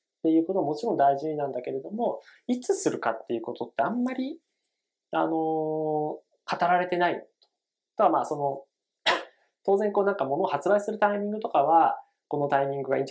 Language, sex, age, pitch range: Japanese, male, 20-39, 135-215 Hz